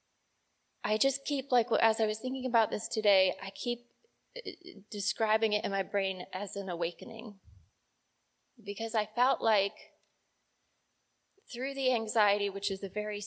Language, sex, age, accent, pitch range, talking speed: English, female, 20-39, American, 195-230 Hz, 145 wpm